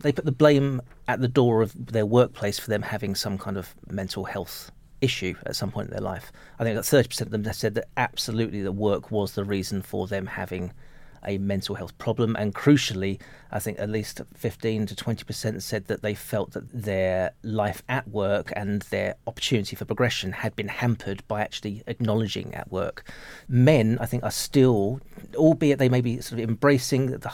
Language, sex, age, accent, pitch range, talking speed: English, male, 40-59, British, 105-130 Hz, 200 wpm